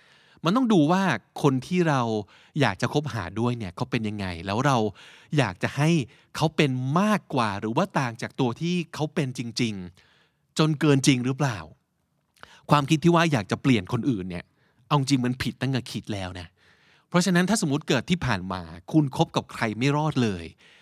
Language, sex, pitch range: Thai, male, 120-165 Hz